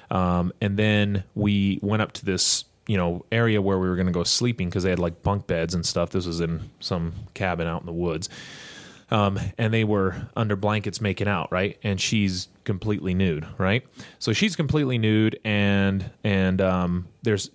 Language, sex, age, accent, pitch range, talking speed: English, male, 30-49, American, 90-110 Hz, 195 wpm